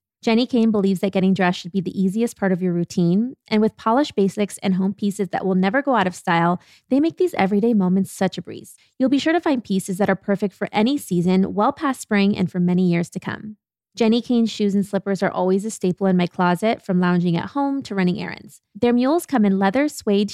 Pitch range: 190-220 Hz